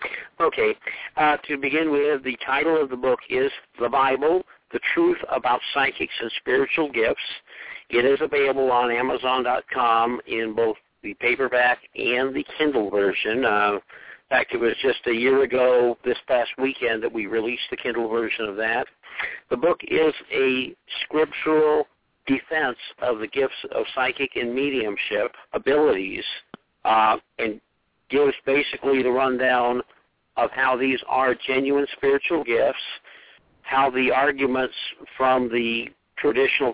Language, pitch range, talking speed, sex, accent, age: English, 120-150 Hz, 140 wpm, male, American, 50-69